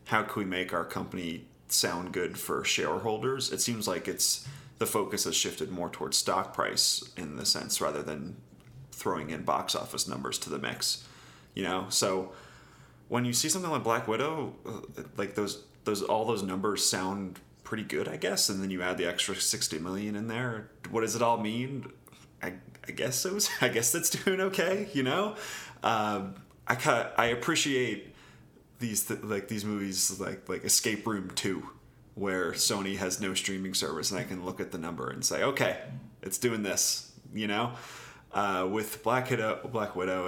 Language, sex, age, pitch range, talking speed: English, male, 30-49, 95-120 Hz, 190 wpm